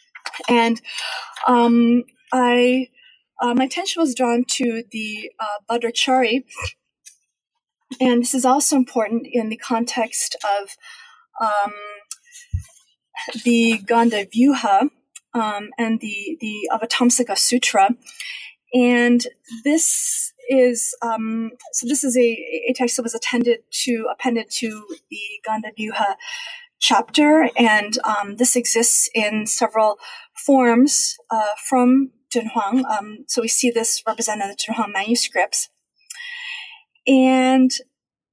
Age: 30-49